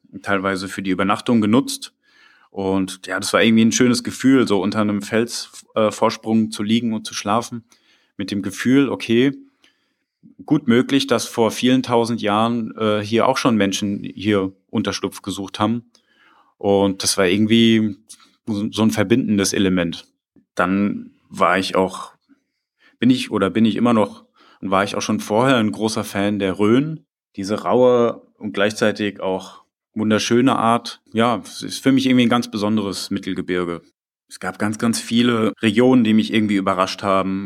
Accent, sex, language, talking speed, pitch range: German, male, German, 160 wpm, 100-120 Hz